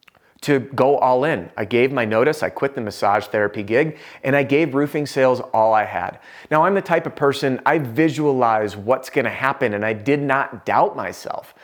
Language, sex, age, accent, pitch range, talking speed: English, male, 30-49, American, 120-150 Hz, 205 wpm